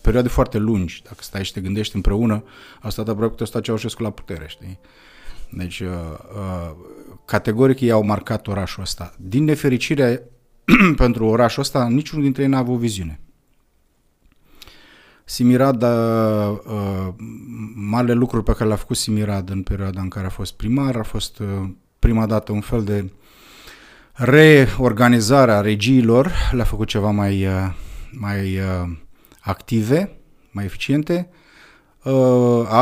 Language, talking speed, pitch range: Romanian, 145 wpm, 100-125 Hz